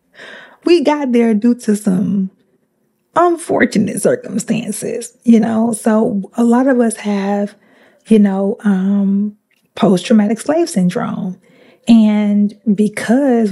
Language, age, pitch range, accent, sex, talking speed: English, 20-39, 205-235 Hz, American, female, 105 wpm